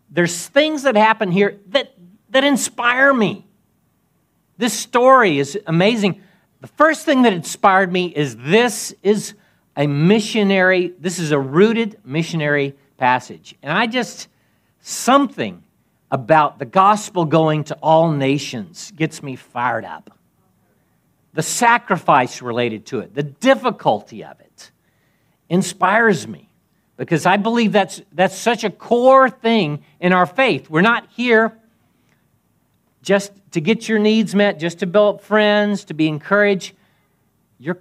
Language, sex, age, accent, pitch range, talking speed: English, male, 50-69, American, 145-215 Hz, 135 wpm